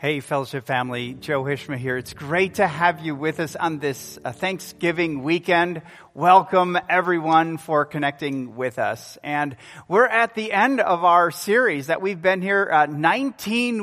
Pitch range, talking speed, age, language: 140-185 Hz, 160 wpm, 40-59, English